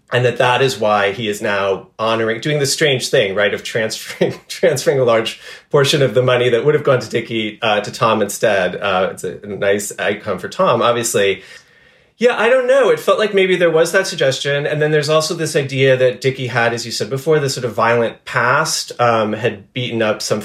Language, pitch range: English, 115-165 Hz